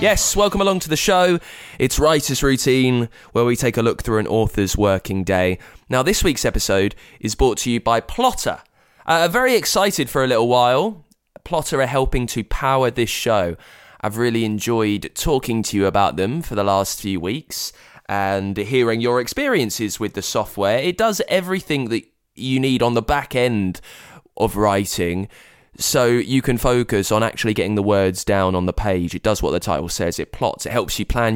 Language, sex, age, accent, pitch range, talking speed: English, male, 20-39, British, 100-130 Hz, 195 wpm